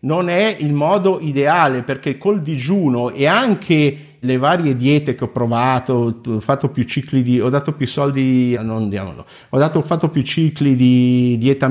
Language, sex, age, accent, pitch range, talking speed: Italian, male, 50-69, native, 105-140 Hz, 185 wpm